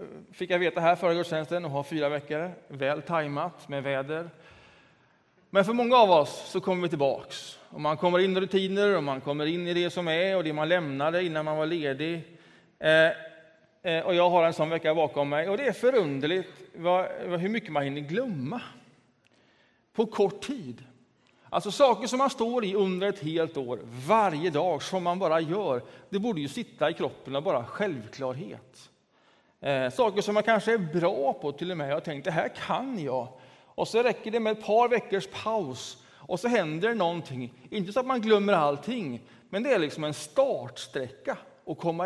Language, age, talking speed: Swedish, 30-49, 190 wpm